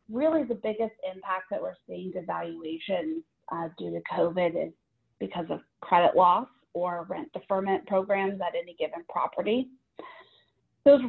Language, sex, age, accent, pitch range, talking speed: English, female, 30-49, American, 175-225 Hz, 140 wpm